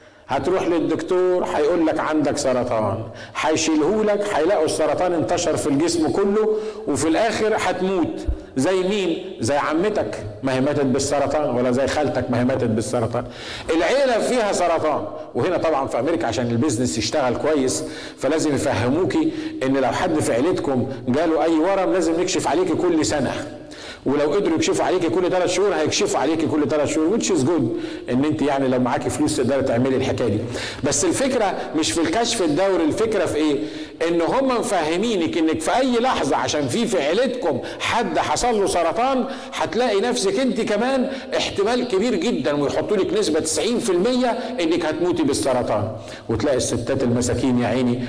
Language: Arabic